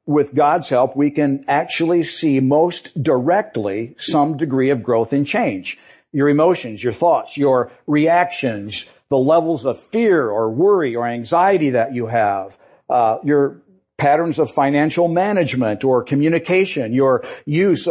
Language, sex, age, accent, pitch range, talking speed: English, male, 50-69, American, 130-170 Hz, 140 wpm